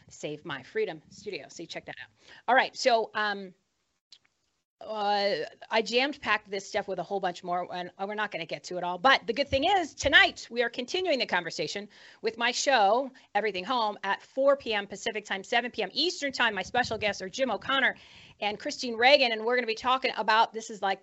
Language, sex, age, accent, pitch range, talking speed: English, female, 40-59, American, 205-260 Hz, 220 wpm